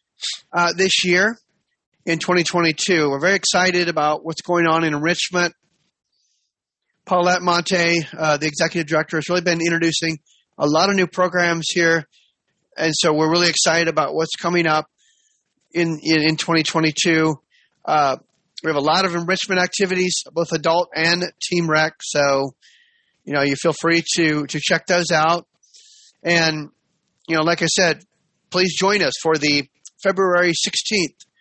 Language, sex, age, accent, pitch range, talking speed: English, male, 30-49, American, 160-180 Hz, 155 wpm